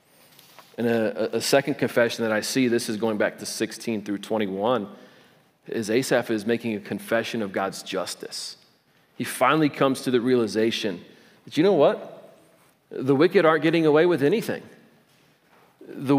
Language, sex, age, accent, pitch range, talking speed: English, male, 40-59, American, 140-185 Hz, 160 wpm